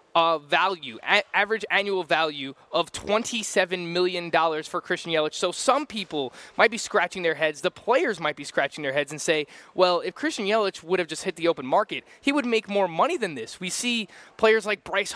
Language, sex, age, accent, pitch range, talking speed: English, male, 20-39, American, 160-210 Hz, 200 wpm